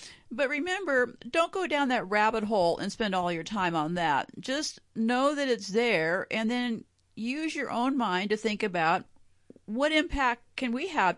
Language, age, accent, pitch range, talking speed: English, 50-69, American, 195-255 Hz, 185 wpm